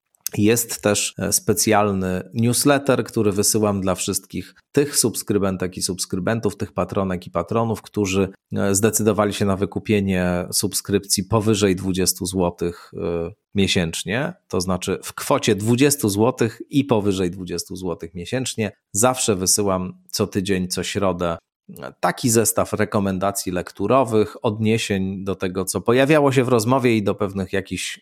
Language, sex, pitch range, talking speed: Polish, male, 90-115 Hz, 125 wpm